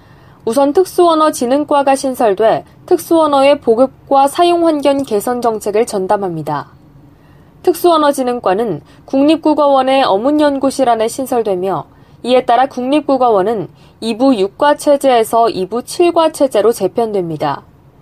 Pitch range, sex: 230-300 Hz, female